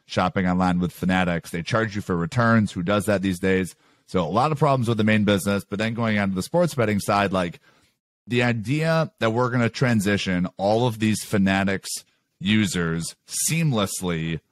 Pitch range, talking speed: 100-130 Hz, 190 wpm